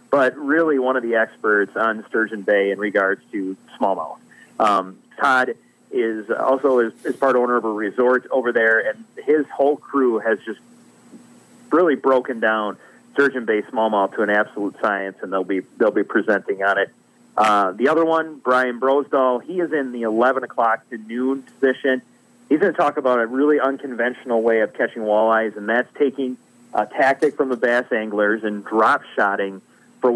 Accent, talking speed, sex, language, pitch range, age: American, 180 wpm, male, English, 110-135 Hz, 40-59